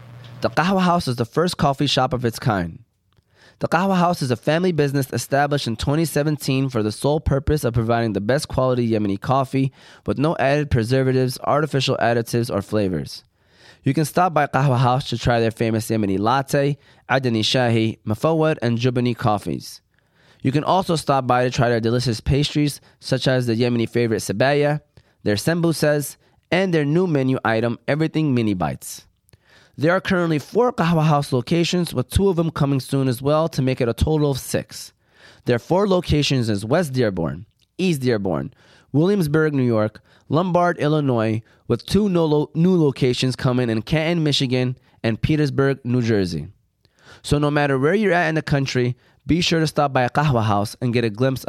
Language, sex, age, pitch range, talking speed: English, male, 20-39, 115-150 Hz, 175 wpm